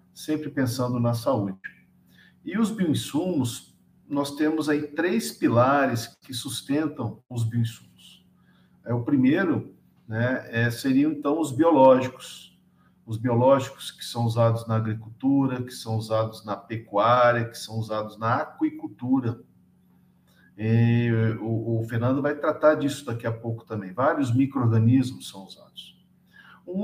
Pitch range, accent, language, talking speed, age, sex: 115-155 Hz, Brazilian, Portuguese, 125 wpm, 50-69, male